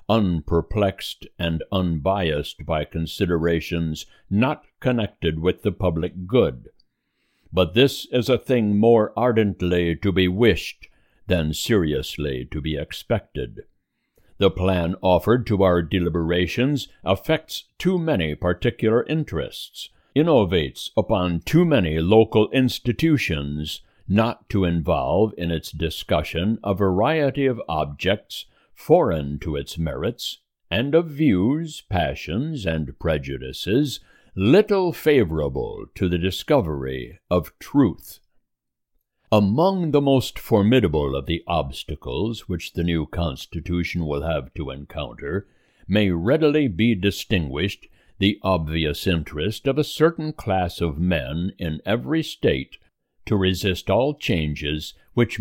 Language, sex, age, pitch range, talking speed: English, male, 60-79, 80-115 Hz, 115 wpm